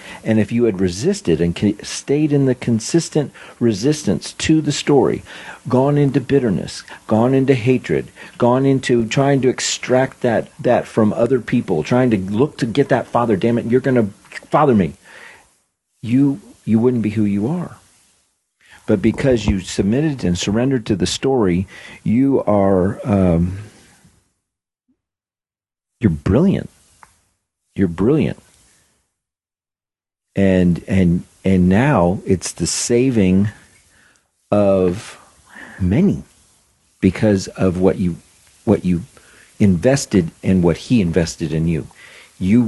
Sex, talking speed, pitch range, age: male, 130 wpm, 90-125 Hz, 50-69